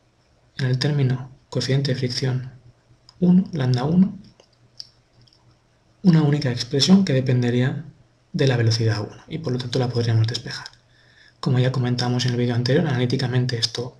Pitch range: 125-150 Hz